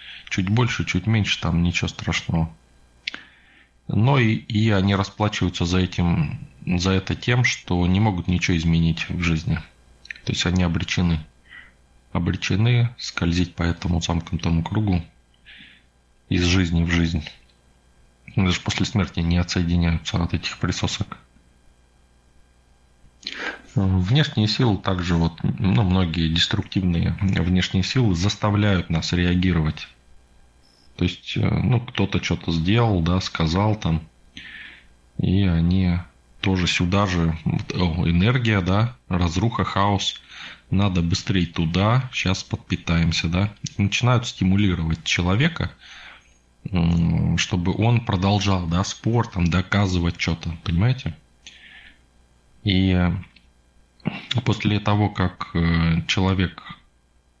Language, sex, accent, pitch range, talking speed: Russian, male, native, 80-100 Hz, 100 wpm